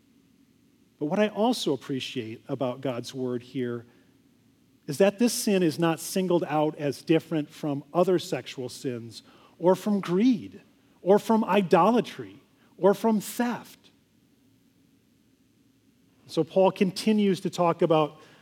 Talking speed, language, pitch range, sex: 125 wpm, English, 165-210 Hz, male